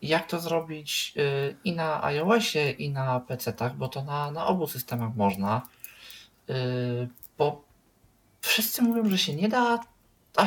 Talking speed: 150 wpm